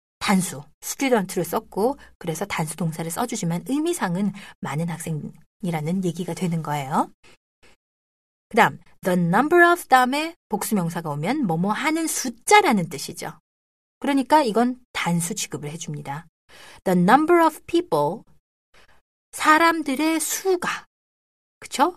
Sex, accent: female, native